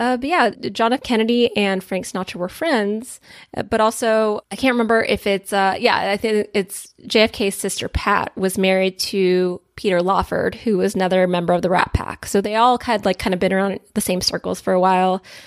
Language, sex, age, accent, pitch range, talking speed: English, female, 20-39, American, 190-245 Hz, 205 wpm